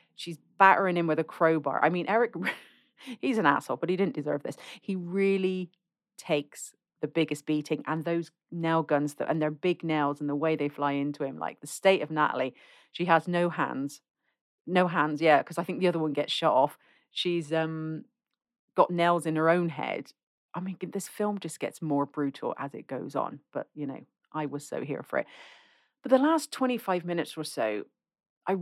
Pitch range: 145-180 Hz